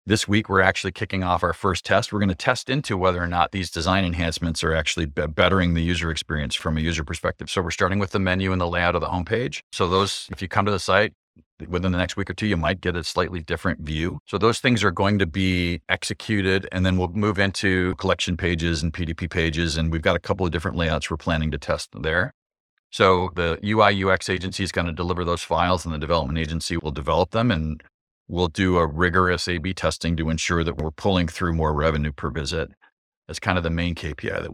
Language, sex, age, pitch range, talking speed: English, male, 40-59, 85-100 Hz, 235 wpm